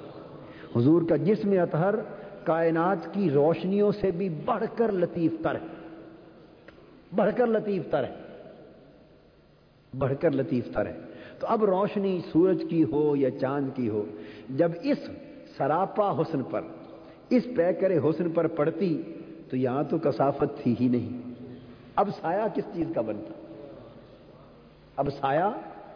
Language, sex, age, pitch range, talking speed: Urdu, male, 50-69, 130-185 Hz, 135 wpm